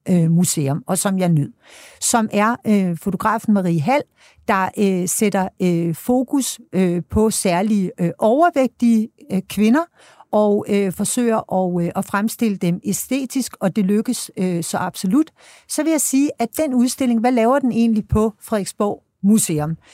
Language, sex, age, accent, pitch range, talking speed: Danish, female, 60-79, native, 185-240 Hz, 155 wpm